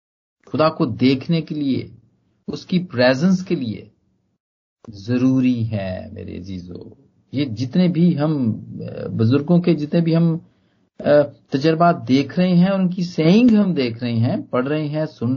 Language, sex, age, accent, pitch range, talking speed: Hindi, male, 50-69, native, 110-175 Hz, 140 wpm